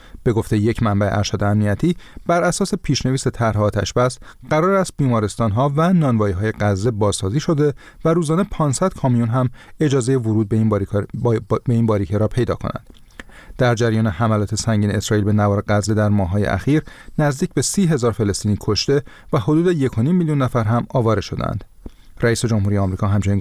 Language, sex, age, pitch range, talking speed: Persian, male, 30-49, 105-145 Hz, 165 wpm